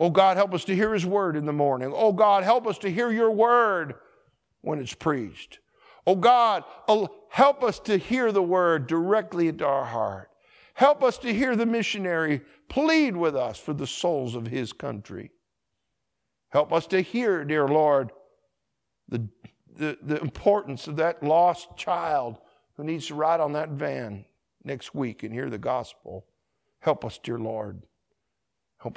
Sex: male